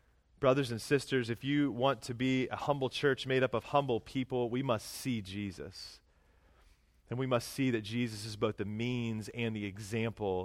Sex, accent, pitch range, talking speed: male, American, 100-145 Hz, 190 wpm